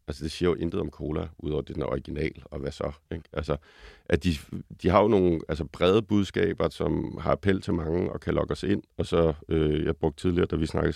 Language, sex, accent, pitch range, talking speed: Danish, male, native, 80-95 Hz, 245 wpm